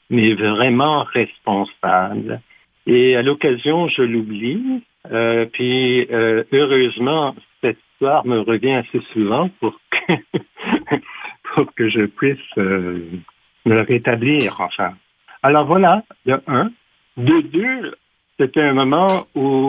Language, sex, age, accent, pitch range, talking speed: French, male, 60-79, French, 115-155 Hz, 115 wpm